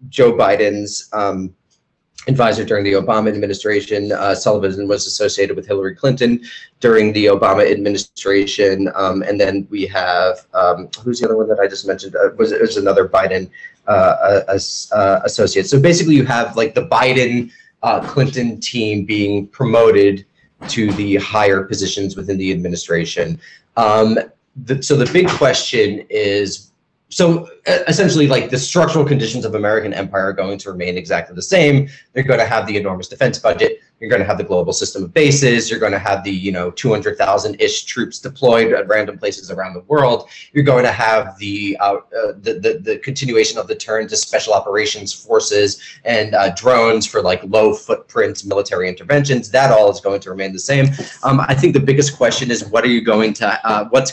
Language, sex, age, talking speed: English, male, 30-49, 180 wpm